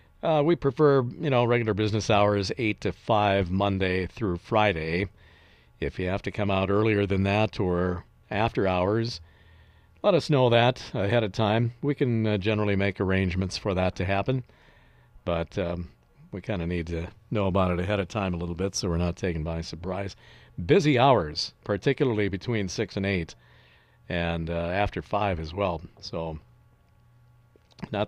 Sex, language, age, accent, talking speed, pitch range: male, English, 50-69, American, 170 wpm, 90-115 Hz